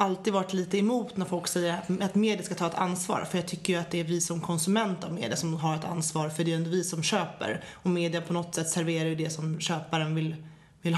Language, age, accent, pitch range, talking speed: English, 30-49, Swedish, 170-210 Hz, 270 wpm